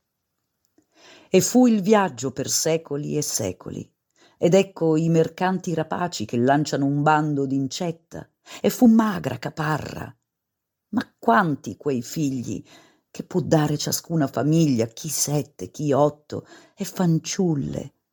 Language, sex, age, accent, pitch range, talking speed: Italian, female, 50-69, native, 130-165 Hz, 125 wpm